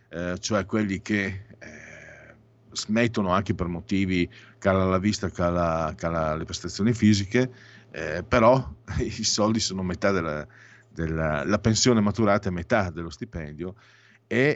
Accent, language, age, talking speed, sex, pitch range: native, Italian, 50-69, 135 wpm, male, 90-115 Hz